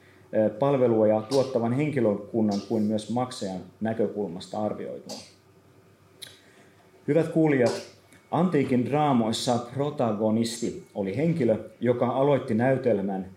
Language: Finnish